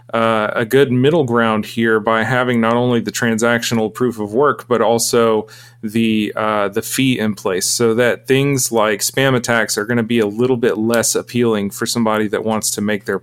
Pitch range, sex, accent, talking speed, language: 110-125 Hz, male, American, 205 wpm, English